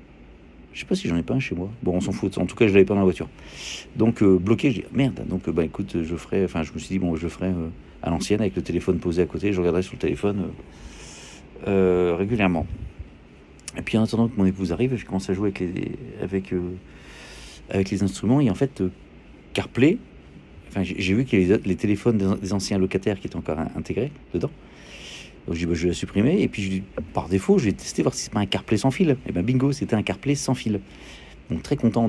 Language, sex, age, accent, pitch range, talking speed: French, male, 50-69, French, 85-105 Hz, 265 wpm